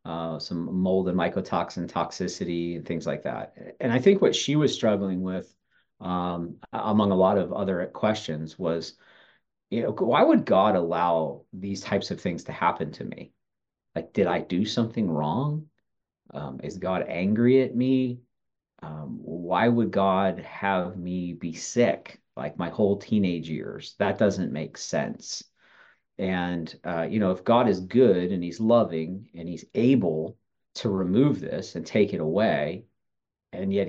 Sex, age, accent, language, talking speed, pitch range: male, 40-59, American, English, 165 wpm, 85-105 Hz